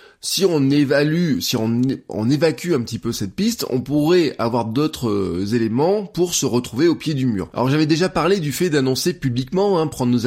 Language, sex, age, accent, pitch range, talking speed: French, male, 20-39, French, 120-170 Hz, 205 wpm